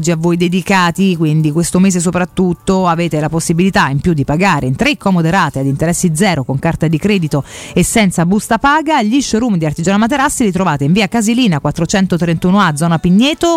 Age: 40-59